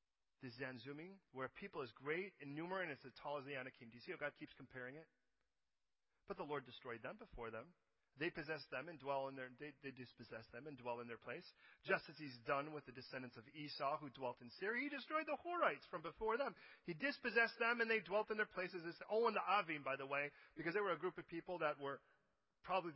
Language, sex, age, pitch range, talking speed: English, male, 40-59, 135-195 Hz, 240 wpm